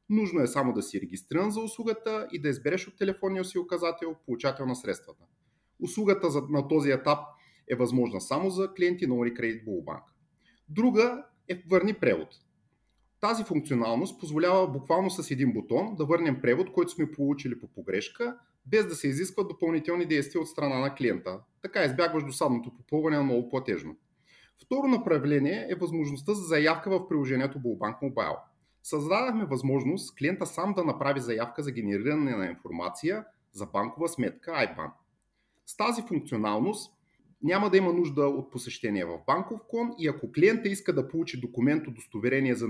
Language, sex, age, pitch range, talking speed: Bulgarian, male, 30-49, 130-185 Hz, 155 wpm